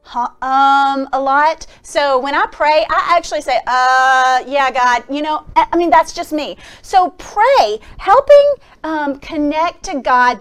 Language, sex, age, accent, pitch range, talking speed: English, female, 30-49, American, 250-345 Hz, 155 wpm